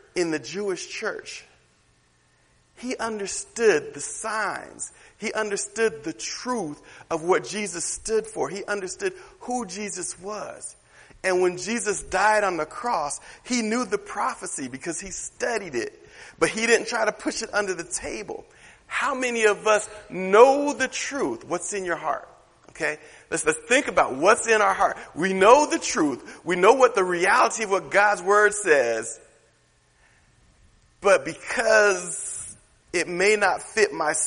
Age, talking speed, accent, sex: 40-59, 155 wpm, American, male